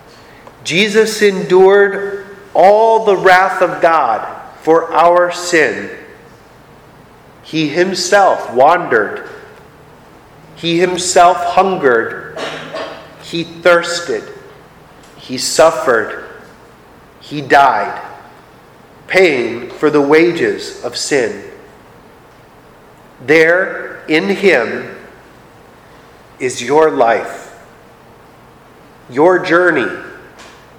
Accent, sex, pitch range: American, male, 155-205 Hz